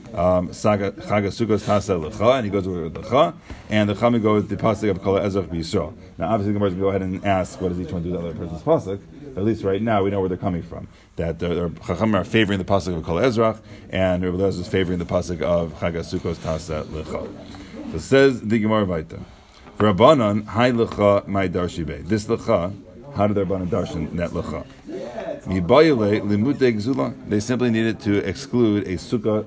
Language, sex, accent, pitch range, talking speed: English, male, American, 90-110 Hz, 195 wpm